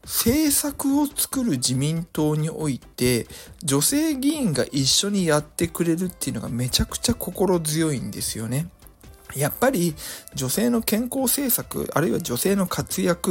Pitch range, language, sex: 130-195 Hz, Japanese, male